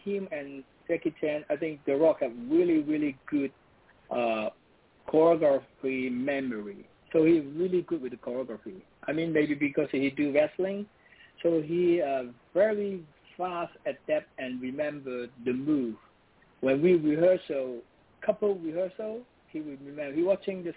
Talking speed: 145 wpm